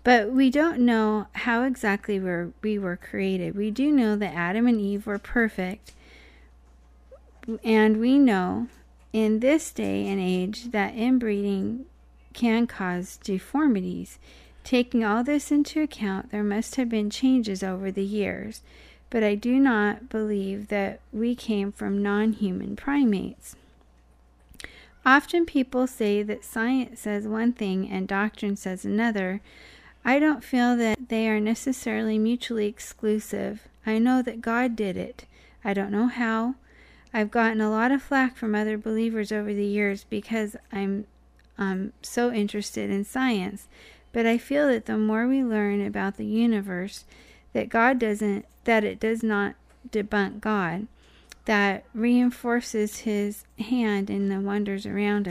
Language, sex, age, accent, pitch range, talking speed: English, female, 40-59, American, 200-235 Hz, 145 wpm